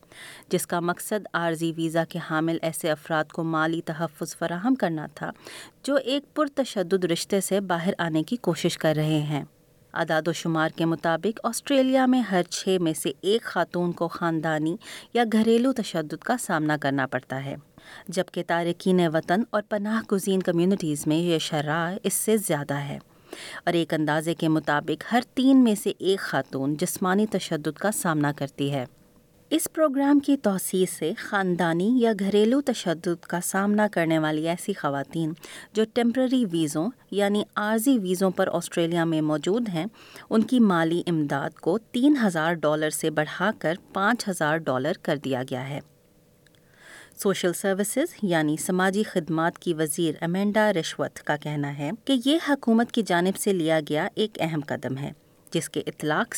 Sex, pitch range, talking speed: female, 160-215 Hz, 160 wpm